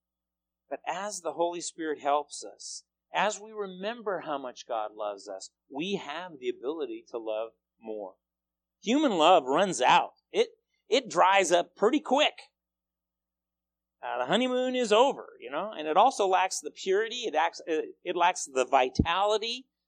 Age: 40-59